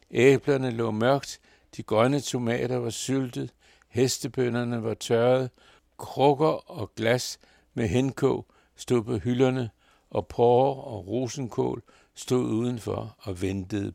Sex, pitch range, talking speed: male, 110-130 Hz, 115 wpm